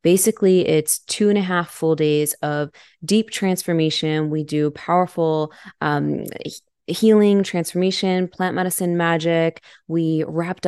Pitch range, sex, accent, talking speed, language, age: 155-180 Hz, female, American, 125 wpm, English, 20-39